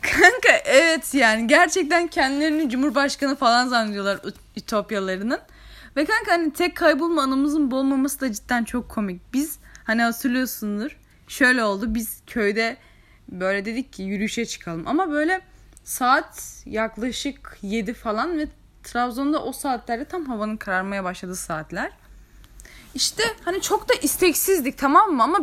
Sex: female